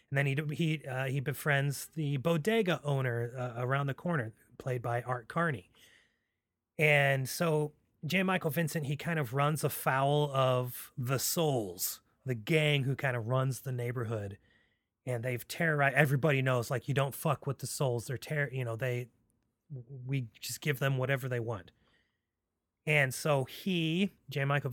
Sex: male